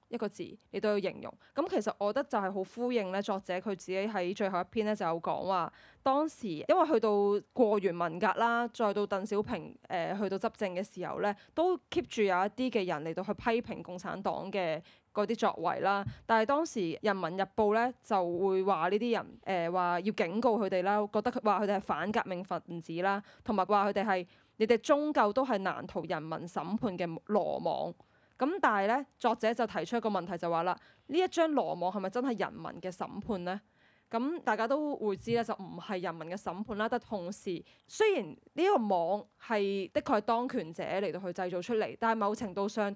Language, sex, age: Chinese, female, 20-39